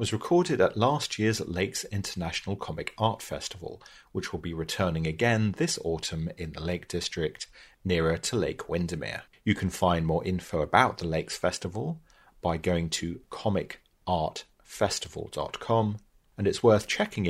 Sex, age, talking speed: male, 30-49, 145 wpm